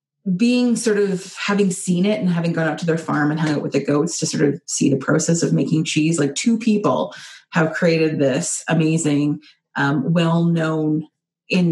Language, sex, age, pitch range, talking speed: English, female, 30-49, 160-190 Hz, 195 wpm